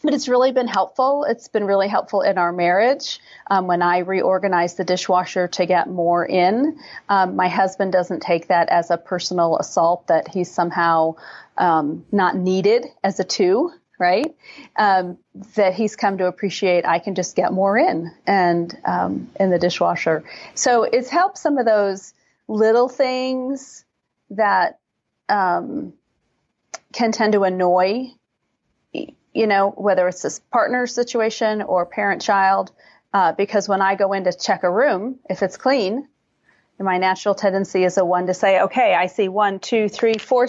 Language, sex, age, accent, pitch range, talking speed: English, female, 40-59, American, 180-220 Hz, 165 wpm